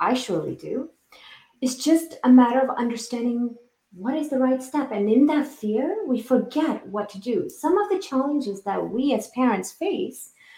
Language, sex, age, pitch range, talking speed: English, female, 30-49, 215-290 Hz, 180 wpm